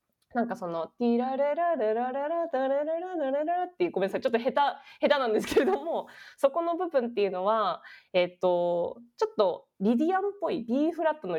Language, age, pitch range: Japanese, 20-39, 205-310 Hz